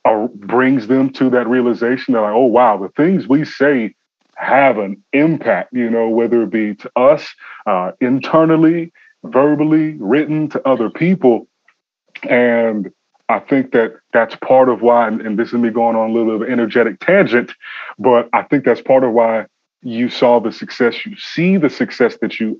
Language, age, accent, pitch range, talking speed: English, 30-49, American, 115-135 Hz, 185 wpm